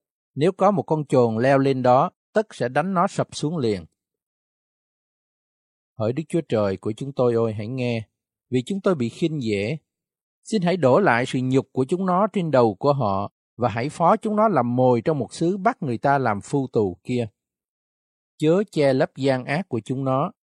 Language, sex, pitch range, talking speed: Vietnamese, male, 120-170 Hz, 200 wpm